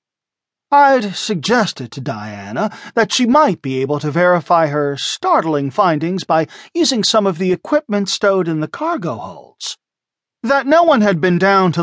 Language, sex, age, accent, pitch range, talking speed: English, male, 40-59, American, 155-240 Hz, 160 wpm